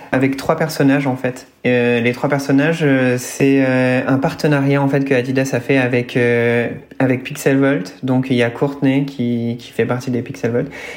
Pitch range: 115-135 Hz